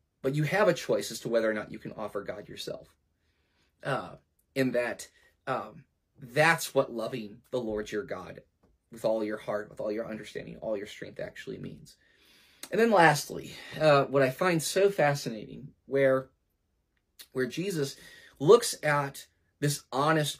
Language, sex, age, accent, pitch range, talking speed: English, male, 30-49, American, 115-160 Hz, 160 wpm